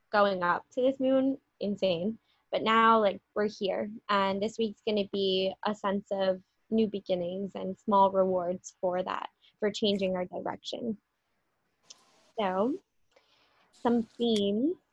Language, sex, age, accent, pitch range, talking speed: English, female, 20-39, American, 200-250 Hz, 135 wpm